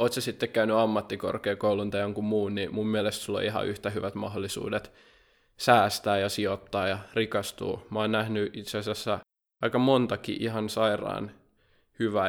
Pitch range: 105-115 Hz